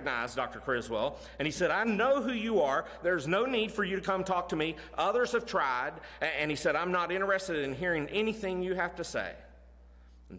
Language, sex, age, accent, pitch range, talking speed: English, male, 50-69, American, 95-150 Hz, 215 wpm